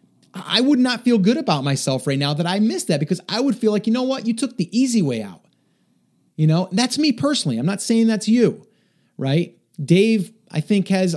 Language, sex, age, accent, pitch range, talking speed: English, male, 30-49, American, 145-195 Hz, 230 wpm